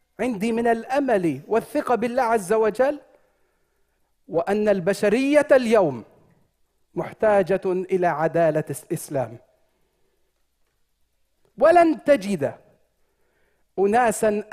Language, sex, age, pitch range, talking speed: English, male, 40-59, 175-240 Hz, 70 wpm